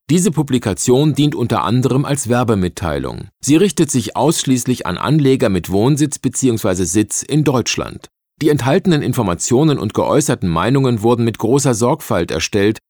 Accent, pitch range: German, 110-150 Hz